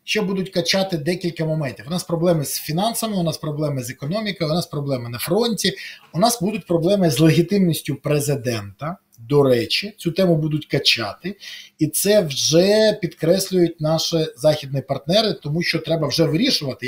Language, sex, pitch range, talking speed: Ukrainian, male, 160-220 Hz, 160 wpm